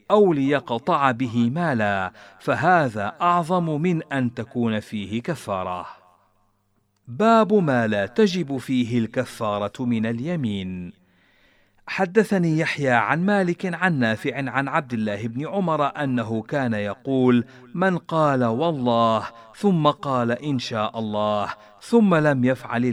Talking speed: 115 wpm